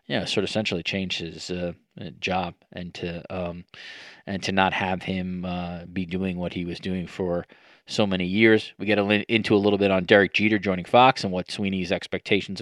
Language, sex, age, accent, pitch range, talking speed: English, male, 20-39, American, 95-115 Hz, 200 wpm